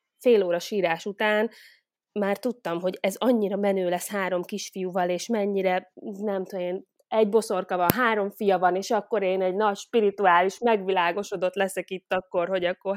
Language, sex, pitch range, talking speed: Hungarian, female, 180-220 Hz, 165 wpm